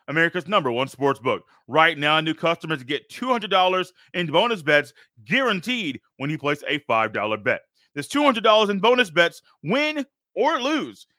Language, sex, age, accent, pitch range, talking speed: English, male, 30-49, American, 145-205 Hz, 155 wpm